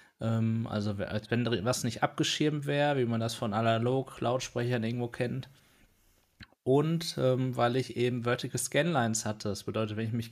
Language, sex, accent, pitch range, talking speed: German, male, German, 110-130 Hz, 145 wpm